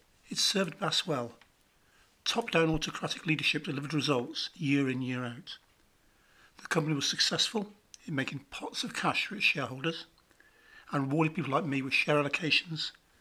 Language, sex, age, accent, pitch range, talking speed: English, male, 50-69, British, 130-165 Hz, 150 wpm